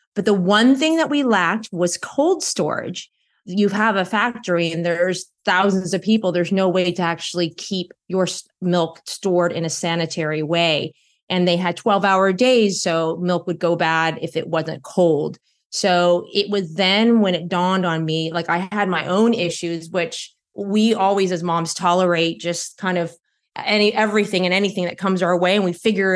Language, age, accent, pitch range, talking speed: English, 30-49, American, 170-200 Hz, 190 wpm